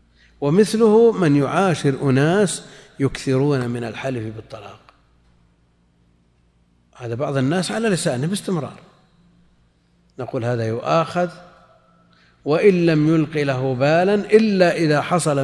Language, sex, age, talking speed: Arabic, male, 50-69, 95 wpm